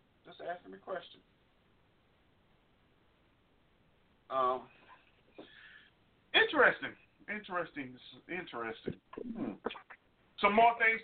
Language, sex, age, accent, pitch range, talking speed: English, male, 50-69, American, 125-190 Hz, 65 wpm